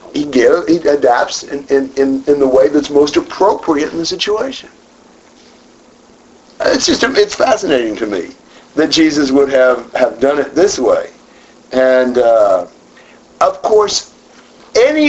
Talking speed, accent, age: 145 wpm, American, 50-69